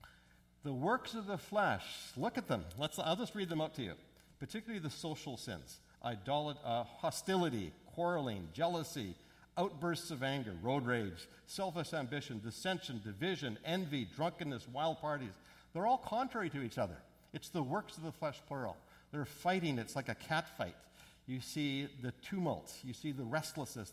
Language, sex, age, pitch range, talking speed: English, male, 50-69, 110-155 Hz, 165 wpm